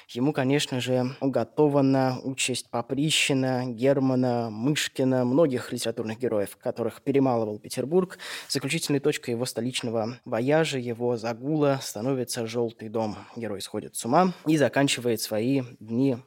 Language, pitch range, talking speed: Russian, 120-145 Hz, 120 wpm